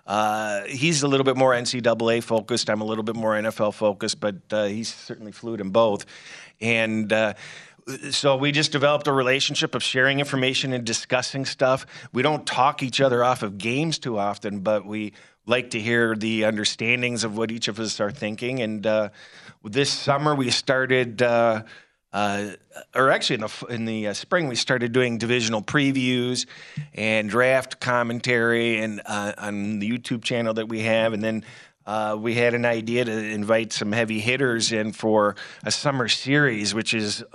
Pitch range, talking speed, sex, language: 110-130 Hz, 180 wpm, male, English